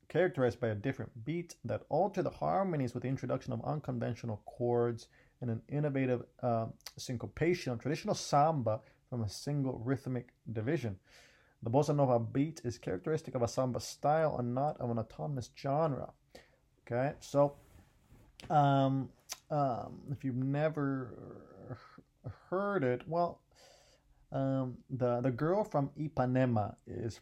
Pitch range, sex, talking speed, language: 110-135 Hz, male, 135 wpm, English